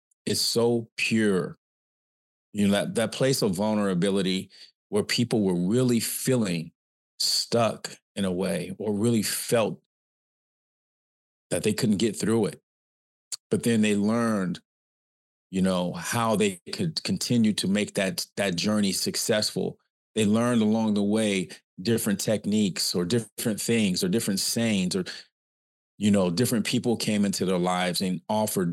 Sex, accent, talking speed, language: male, American, 140 wpm, English